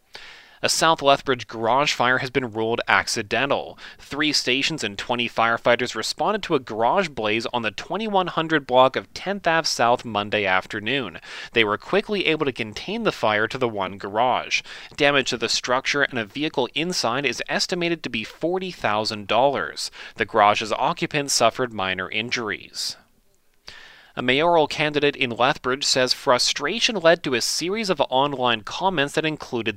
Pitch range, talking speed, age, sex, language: 115-160 Hz, 155 wpm, 30-49, male, English